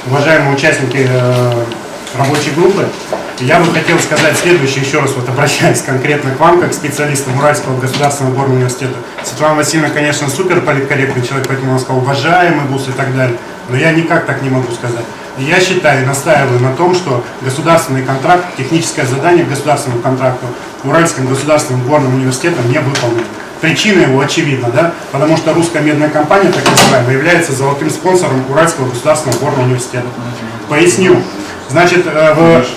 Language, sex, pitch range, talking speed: Russian, male, 135-165 Hz, 155 wpm